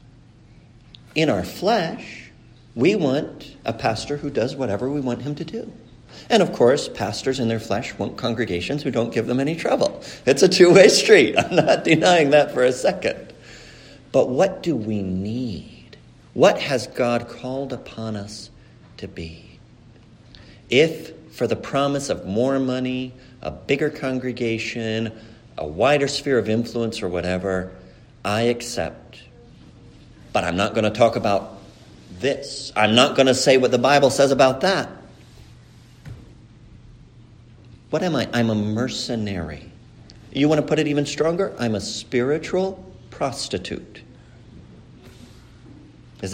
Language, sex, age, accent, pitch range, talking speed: English, male, 50-69, American, 115-150 Hz, 140 wpm